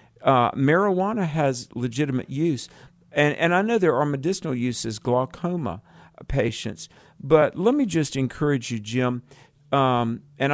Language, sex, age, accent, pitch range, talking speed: English, male, 50-69, American, 115-140 Hz, 135 wpm